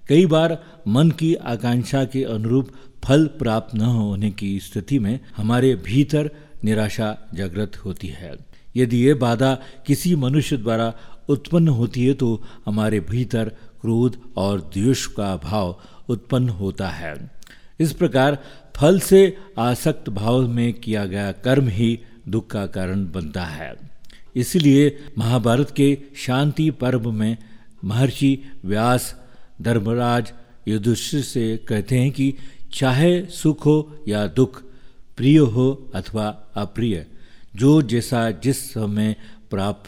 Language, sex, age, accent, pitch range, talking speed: Hindi, male, 50-69, native, 105-135 Hz, 125 wpm